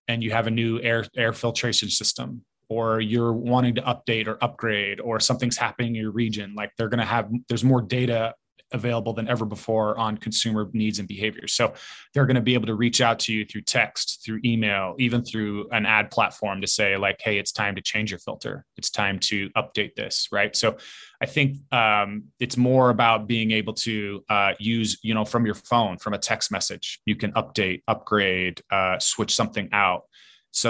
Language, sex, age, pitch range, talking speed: English, male, 20-39, 105-120 Hz, 205 wpm